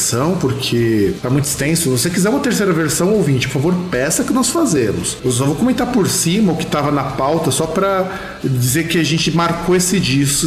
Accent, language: Brazilian, Portuguese